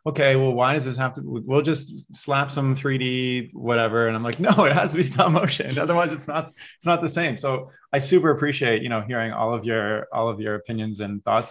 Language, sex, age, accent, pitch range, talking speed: English, male, 20-39, American, 115-145 Hz, 240 wpm